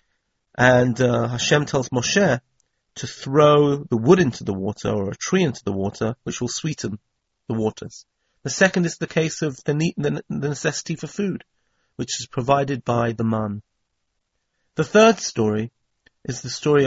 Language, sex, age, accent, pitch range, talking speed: English, male, 40-59, British, 110-140 Hz, 160 wpm